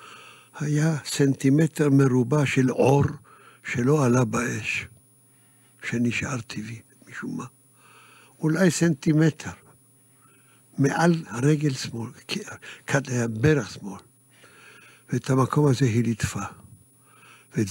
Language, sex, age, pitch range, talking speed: Hebrew, male, 60-79, 115-140 Hz, 90 wpm